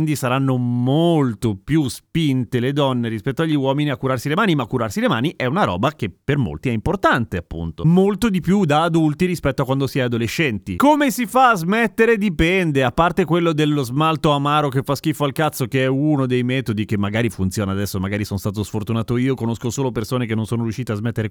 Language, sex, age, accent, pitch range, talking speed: Italian, male, 30-49, native, 125-175 Hz, 220 wpm